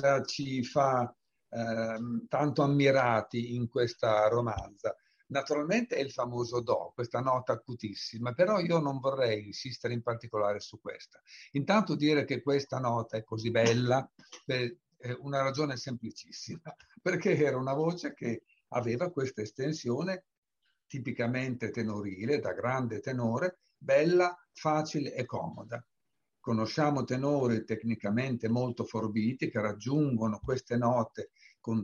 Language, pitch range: Italian, 115-145 Hz